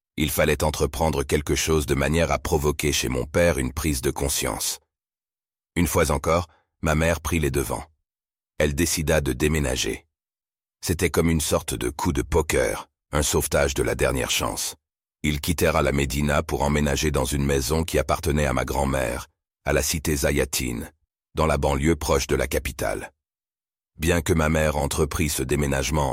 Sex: male